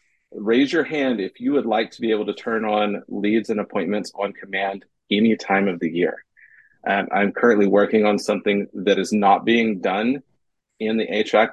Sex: male